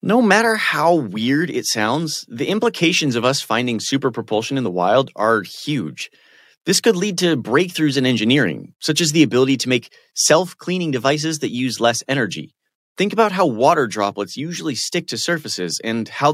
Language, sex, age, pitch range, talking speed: English, male, 30-49, 110-160 Hz, 175 wpm